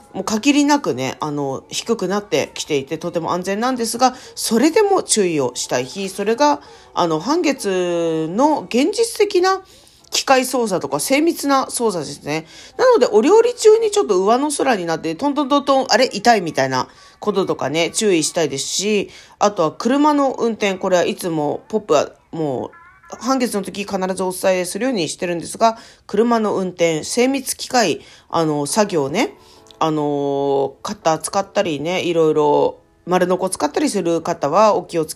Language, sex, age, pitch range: Japanese, female, 40-59, 165-270 Hz